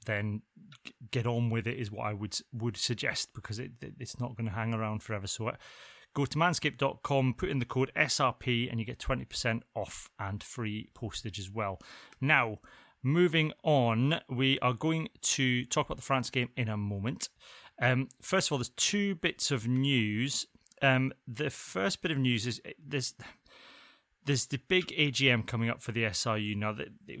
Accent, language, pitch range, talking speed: British, English, 115-140 Hz, 185 wpm